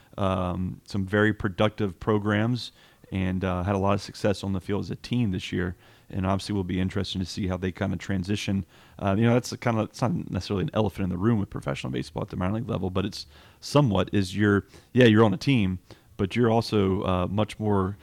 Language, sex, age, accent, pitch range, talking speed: English, male, 30-49, American, 95-105 Hz, 235 wpm